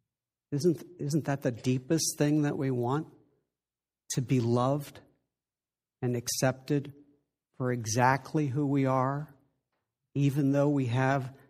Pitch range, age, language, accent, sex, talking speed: 125-140 Hz, 60-79, English, American, male, 120 wpm